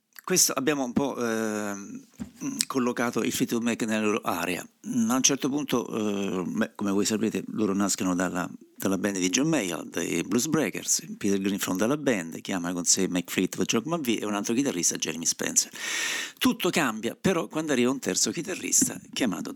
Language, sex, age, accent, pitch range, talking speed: Italian, male, 50-69, native, 95-135 Hz, 180 wpm